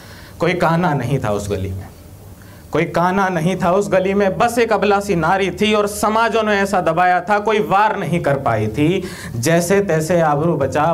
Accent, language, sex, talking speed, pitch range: native, Hindi, male, 190 wpm, 130-215 Hz